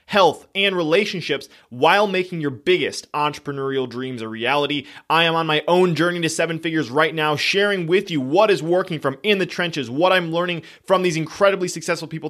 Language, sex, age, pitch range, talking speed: English, male, 30-49, 150-195 Hz, 195 wpm